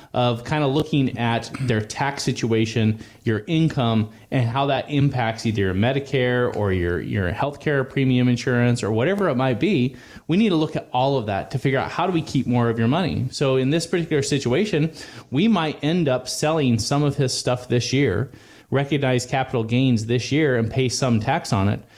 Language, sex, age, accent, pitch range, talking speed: English, male, 20-39, American, 110-135 Hz, 205 wpm